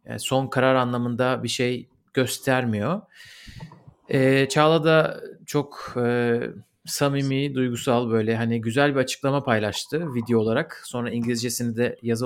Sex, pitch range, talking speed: male, 115-140 Hz, 125 wpm